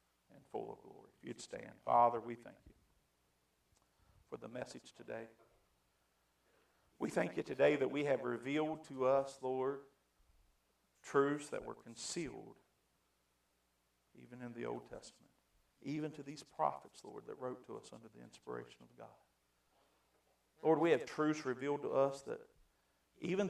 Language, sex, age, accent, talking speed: English, male, 50-69, American, 150 wpm